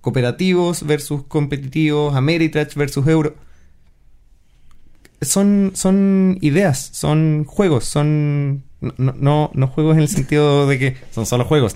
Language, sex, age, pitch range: Spanish, male, 20-39, 125-165 Hz